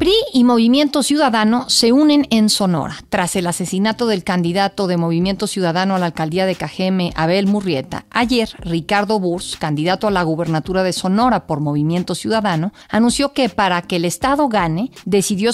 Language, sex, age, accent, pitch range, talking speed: Spanish, female, 40-59, Mexican, 180-235 Hz, 165 wpm